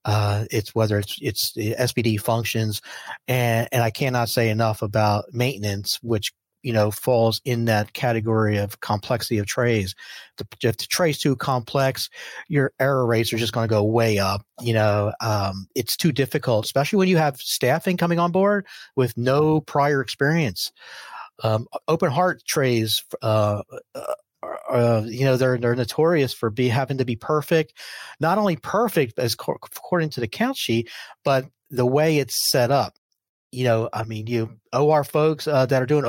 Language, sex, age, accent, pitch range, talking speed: English, male, 40-59, American, 115-140 Hz, 175 wpm